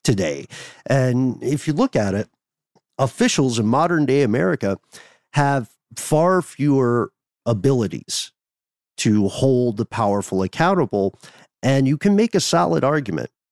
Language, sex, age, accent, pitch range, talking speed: English, male, 50-69, American, 100-140 Hz, 125 wpm